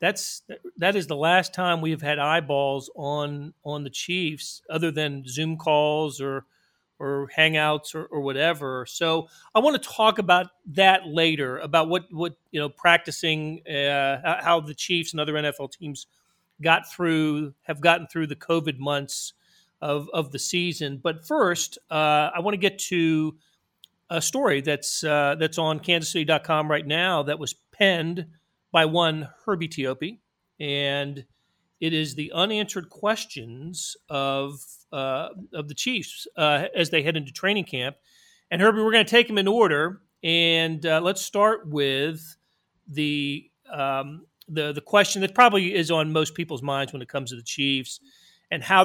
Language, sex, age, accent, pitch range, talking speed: English, male, 40-59, American, 145-170 Hz, 165 wpm